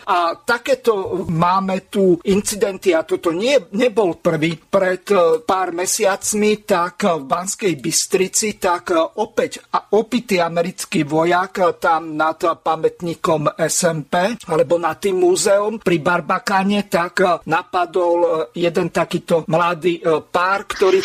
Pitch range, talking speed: 170-205 Hz, 110 wpm